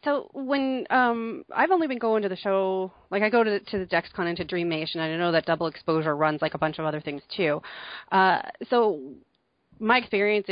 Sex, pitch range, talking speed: female, 165-210 Hz, 230 wpm